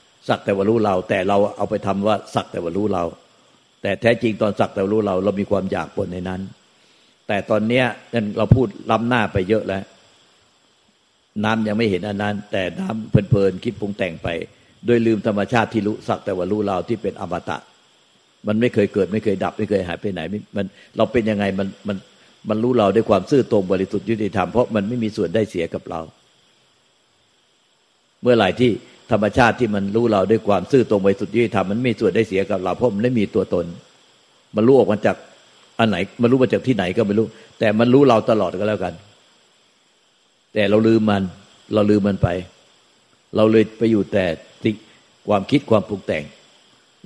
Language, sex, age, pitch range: Thai, male, 60-79, 100-115 Hz